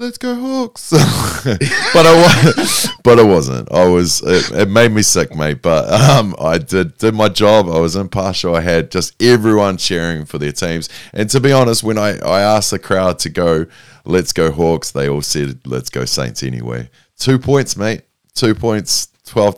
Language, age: English, 20-39